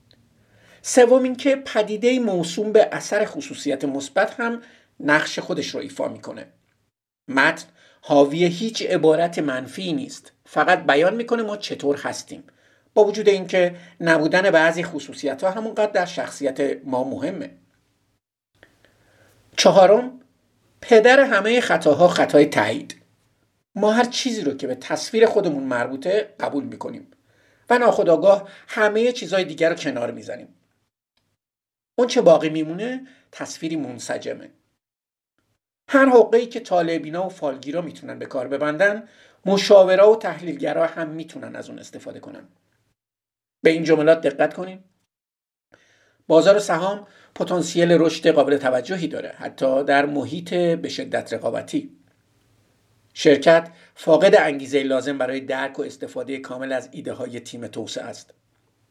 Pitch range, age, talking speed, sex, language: 140-210 Hz, 50-69, 120 wpm, male, Persian